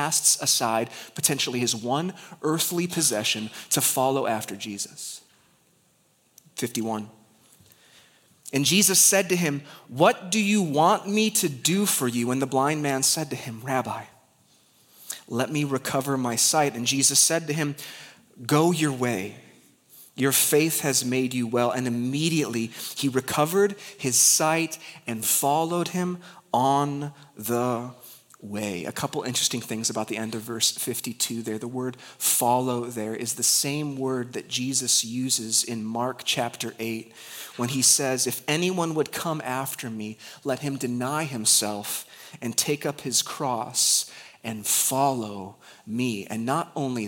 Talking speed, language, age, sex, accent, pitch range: 145 wpm, English, 30-49, male, American, 120-155 Hz